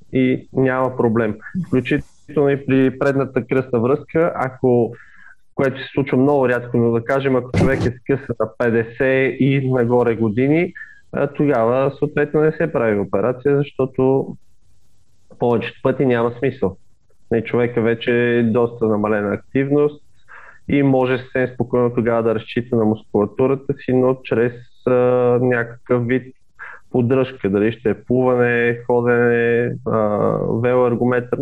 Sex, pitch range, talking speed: male, 115-135 Hz, 125 wpm